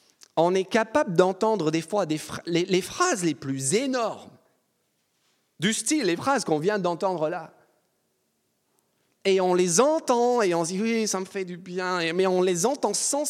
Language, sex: French, male